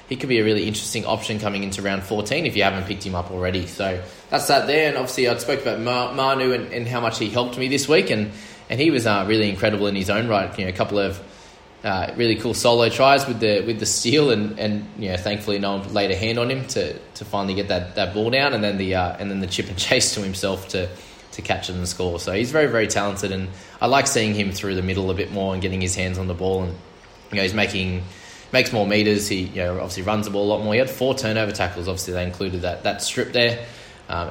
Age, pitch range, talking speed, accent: 20-39, 95-120 Hz, 275 wpm, Australian